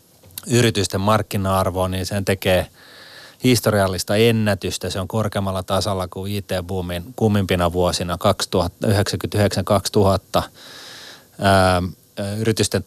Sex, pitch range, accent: male, 90-110 Hz, native